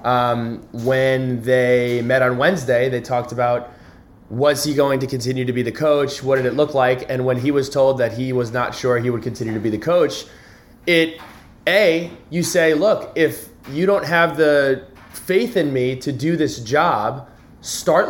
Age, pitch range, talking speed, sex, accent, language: 20-39, 125-155 Hz, 190 wpm, male, American, English